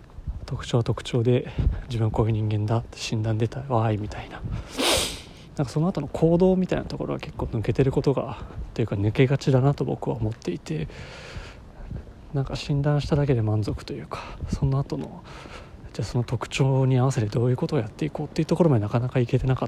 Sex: male